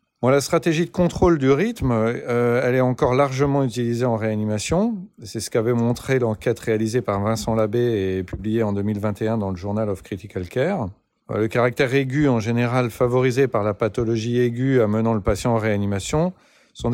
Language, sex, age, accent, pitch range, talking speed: French, male, 40-59, French, 110-135 Hz, 175 wpm